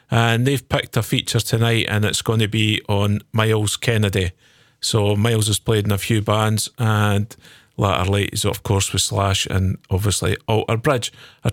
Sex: male